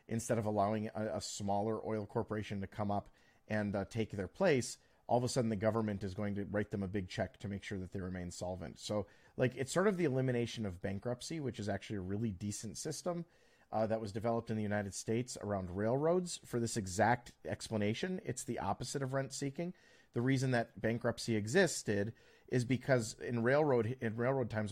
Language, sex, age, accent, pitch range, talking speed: English, male, 40-59, American, 105-120 Hz, 205 wpm